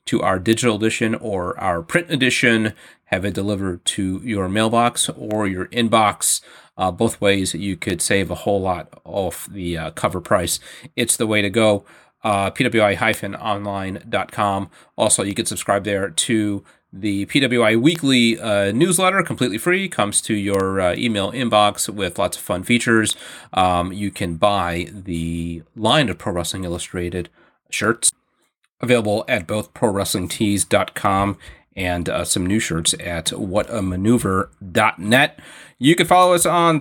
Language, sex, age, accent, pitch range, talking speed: English, male, 30-49, American, 95-115 Hz, 145 wpm